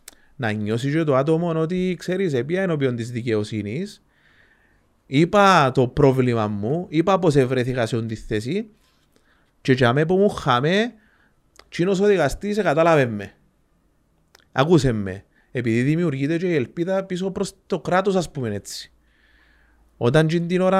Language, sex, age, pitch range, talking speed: Greek, male, 30-49, 115-180 Hz, 135 wpm